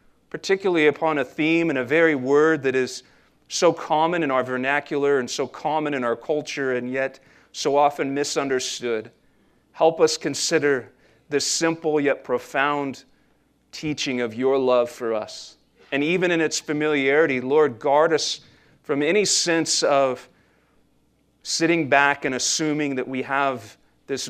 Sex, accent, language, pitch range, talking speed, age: male, American, English, 130-155 Hz, 145 wpm, 40-59